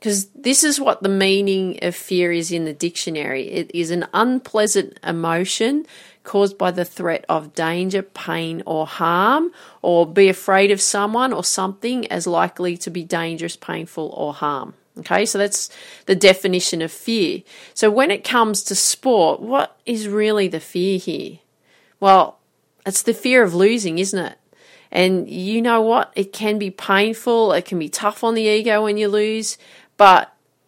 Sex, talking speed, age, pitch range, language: female, 170 wpm, 40-59, 175-225 Hz, English